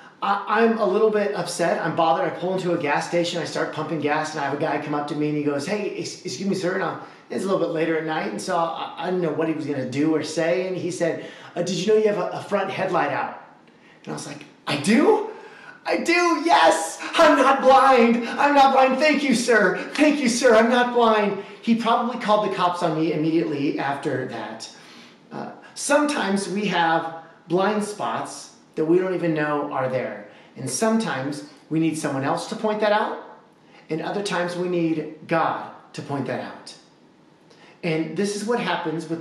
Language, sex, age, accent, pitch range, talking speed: English, male, 30-49, American, 150-200 Hz, 215 wpm